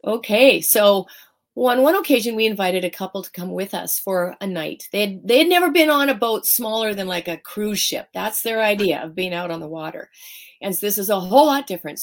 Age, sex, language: 40-59, female, English